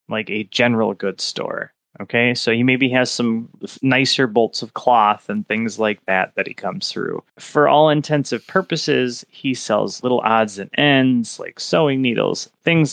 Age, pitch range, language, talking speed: 20-39, 110-140 Hz, English, 170 wpm